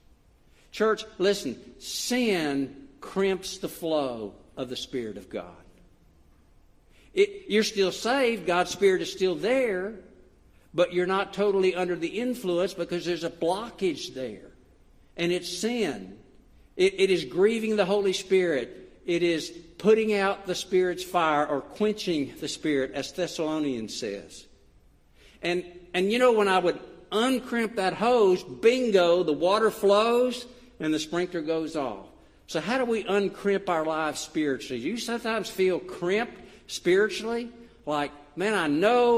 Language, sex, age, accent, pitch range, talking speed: English, male, 60-79, American, 155-215 Hz, 140 wpm